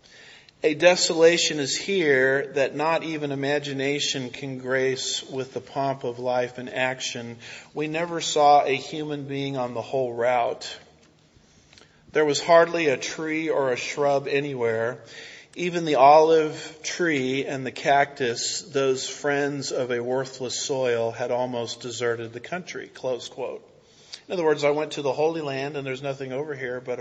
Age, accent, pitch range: 40-59, American, 130-155 Hz